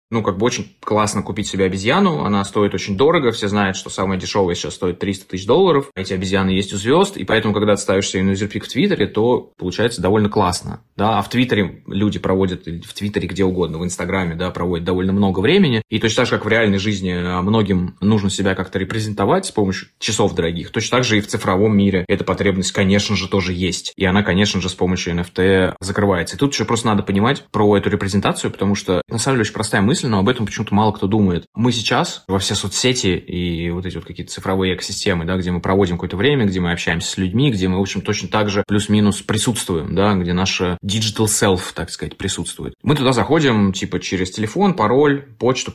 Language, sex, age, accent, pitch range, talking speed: Russian, male, 20-39, native, 95-110 Hz, 220 wpm